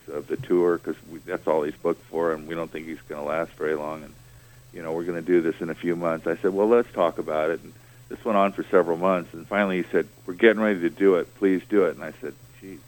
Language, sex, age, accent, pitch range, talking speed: English, male, 50-69, American, 80-115 Hz, 290 wpm